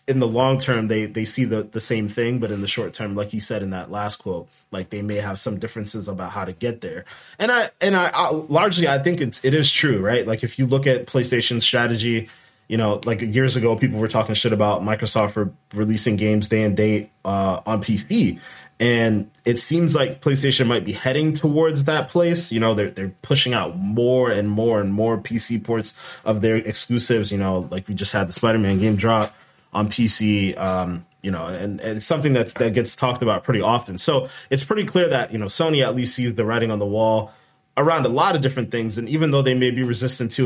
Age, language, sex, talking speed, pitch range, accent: 20-39, English, male, 230 wpm, 105-130 Hz, American